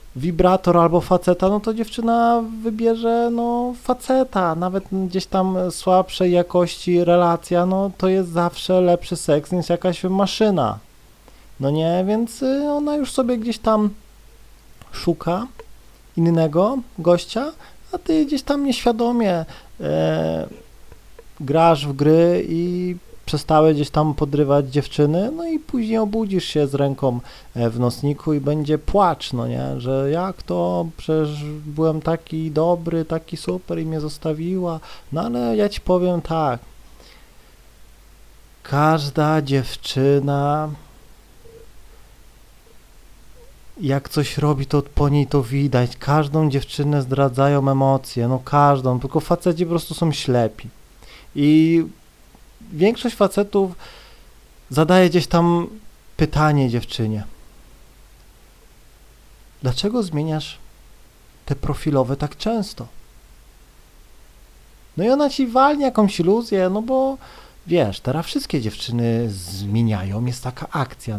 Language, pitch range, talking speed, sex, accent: Polish, 140-190 Hz, 110 wpm, male, native